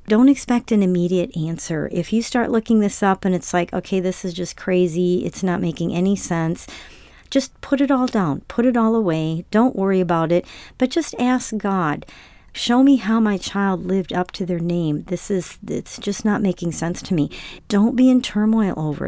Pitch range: 165-215 Hz